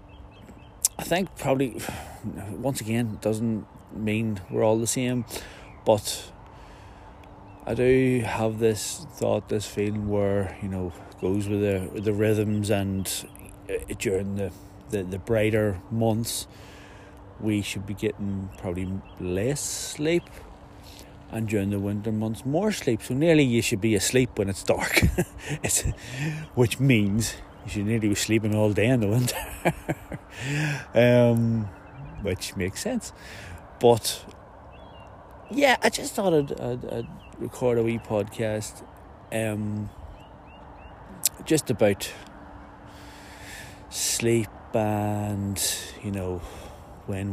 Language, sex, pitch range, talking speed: English, male, 95-115 Hz, 120 wpm